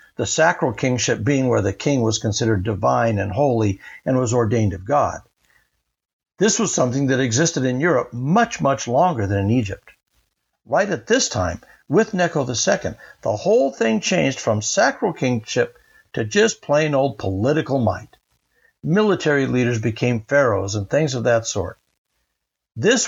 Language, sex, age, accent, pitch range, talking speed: English, male, 60-79, American, 110-175 Hz, 155 wpm